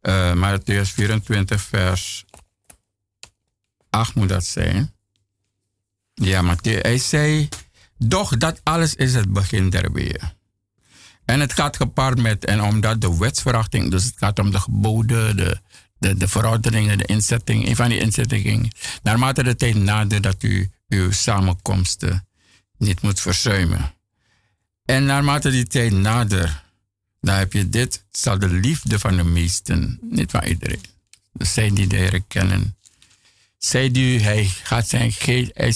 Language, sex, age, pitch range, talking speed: Dutch, male, 60-79, 95-115 Hz, 145 wpm